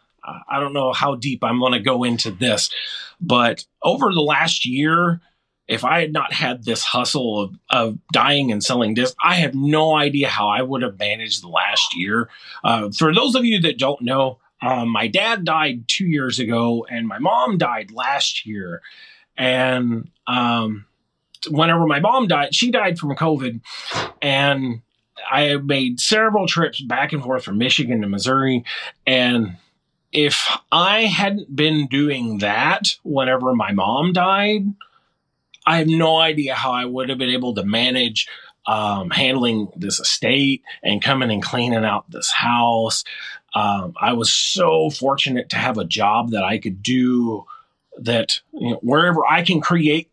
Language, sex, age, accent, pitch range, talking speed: English, male, 30-49, American, 120-160 Hz, 165 wpm